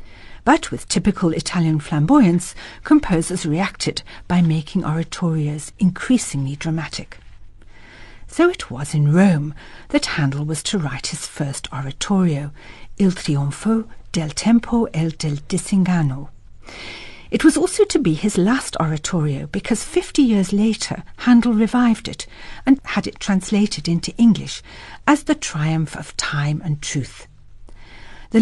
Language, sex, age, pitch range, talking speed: English, female, 60-79, 145-195 Hz, 130 wpm